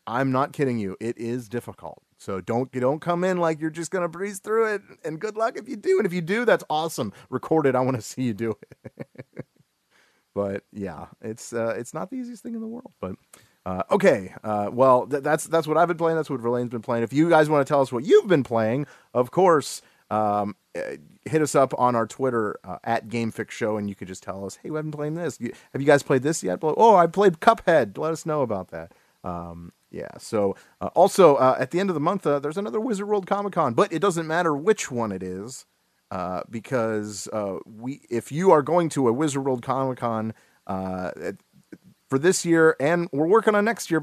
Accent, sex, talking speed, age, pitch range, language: American, male, 230 wpm, 30-49, 115-175 Hz, English